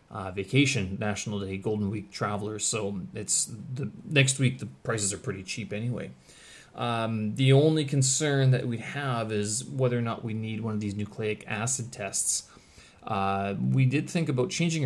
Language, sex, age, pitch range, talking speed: English, male, 30-49, 105-130 Hz, 175 wpm